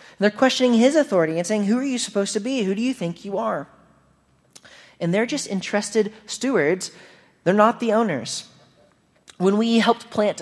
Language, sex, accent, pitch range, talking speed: English, male, American, 160-225 Hz, 180 wpm